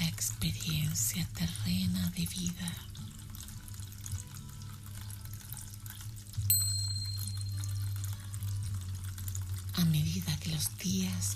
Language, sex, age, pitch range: Spanish, female, 40-59, 95-105 Hz